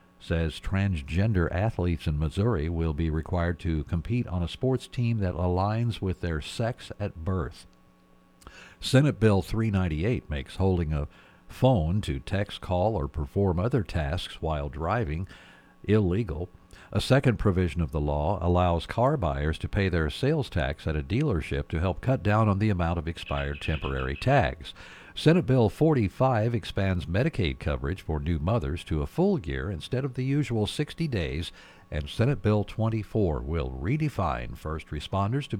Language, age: English, 60-79